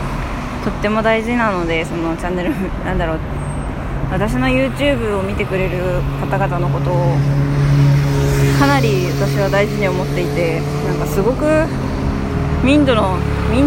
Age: 20-39